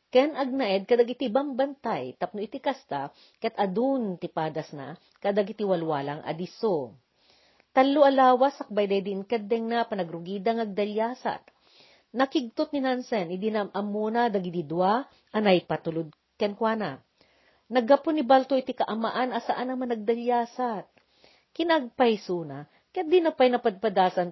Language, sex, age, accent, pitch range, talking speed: Filipino, female, 40-59, native, 185-260 Hz, 110 wpm